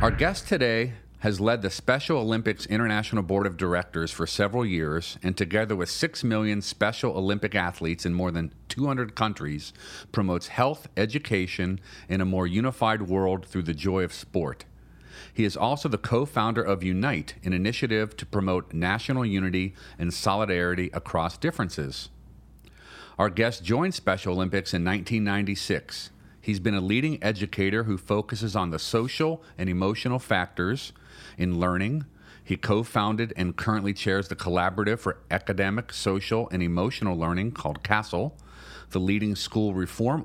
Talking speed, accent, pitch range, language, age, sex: 150 wpm, American, 90-110 Hz, English, 40-59, male